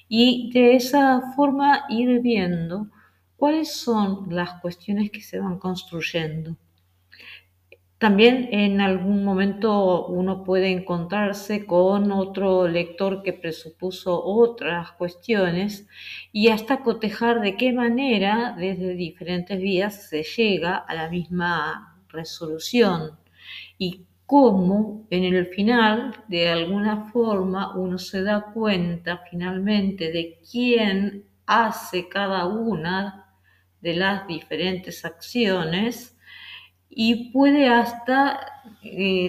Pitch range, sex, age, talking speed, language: 175-210 Hz, female, 50-69, 105 wpm, Spanish